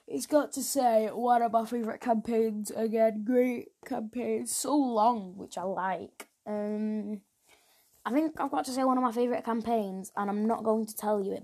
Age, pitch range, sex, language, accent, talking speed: 10-29, 210-255 Hz, female, English, British, 200 wpm